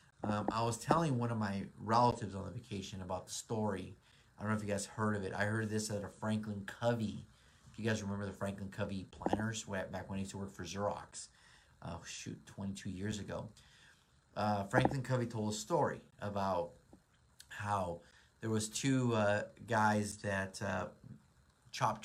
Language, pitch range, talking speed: English, 95-110 Hz, 185 wpm